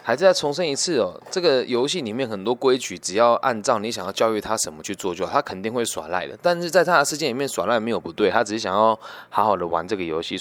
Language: Chinese